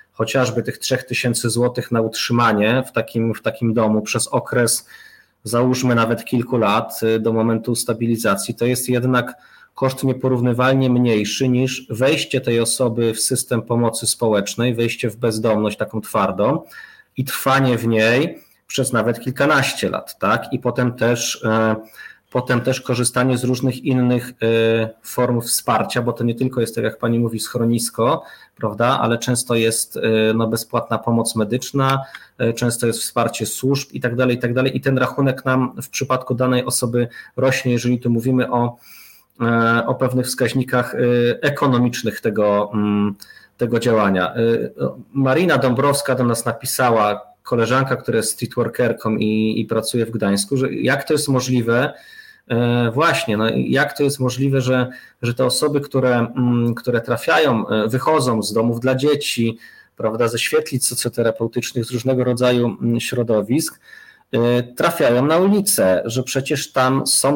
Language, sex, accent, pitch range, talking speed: Polish, male, native, 115-130 Hz, 140 wpm